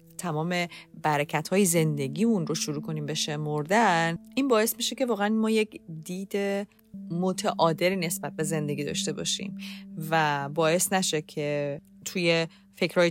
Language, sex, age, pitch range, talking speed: Persian, female, 30-49, 155-205 Hz, 135 wpm